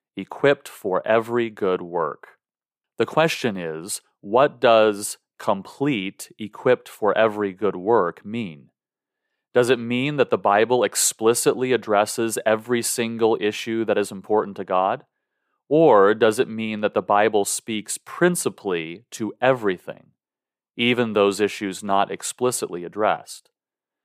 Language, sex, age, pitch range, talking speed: English, male, 30-49, 105-125 Hz, 125 wpm